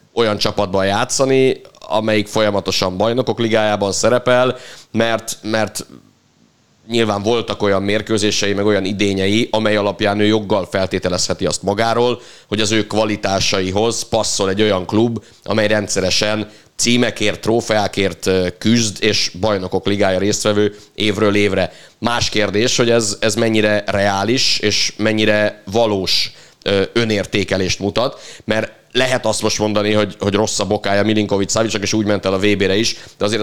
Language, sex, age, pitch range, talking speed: Hungarian, male, 30-49, 100-110 Hz, 135 wpm